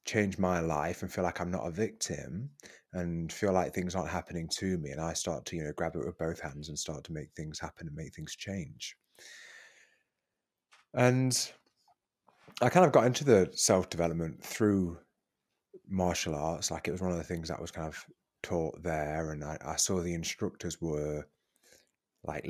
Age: 30-49